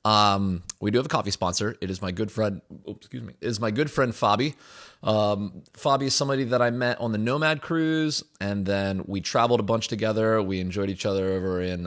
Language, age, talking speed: English, 30-49, 210 wpm